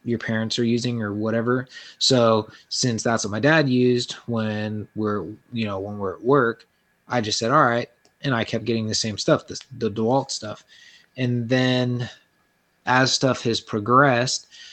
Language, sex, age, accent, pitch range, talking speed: English, male, 20-39, American, 110-130 Hz, 170 wpm